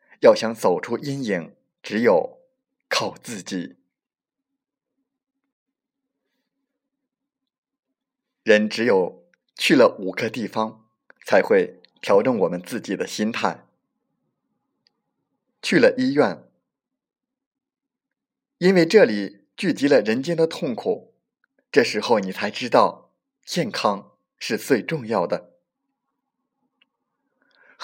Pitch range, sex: 170-275 Hz, male